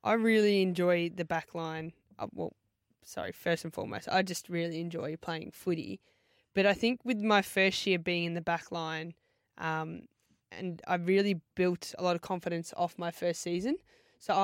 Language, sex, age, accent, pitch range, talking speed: English, female, 20-39, Australian, 165-190 Hz, 180 wpm